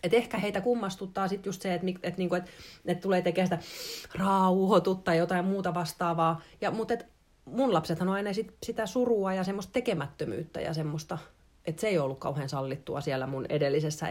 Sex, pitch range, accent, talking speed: female, 155-195 Hz, native, 180 wpm